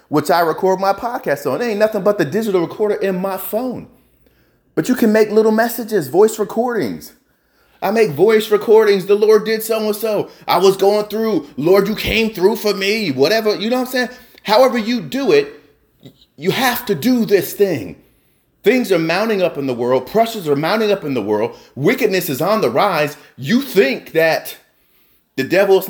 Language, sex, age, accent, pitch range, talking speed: English, male, 30-49, American, 185-225 Hz, 195 wpm